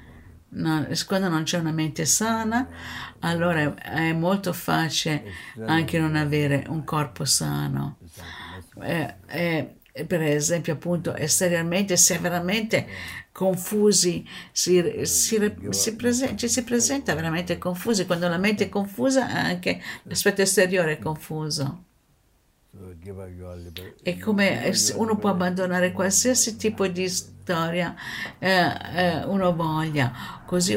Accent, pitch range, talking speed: native, 145-185 Hz, 115 wpm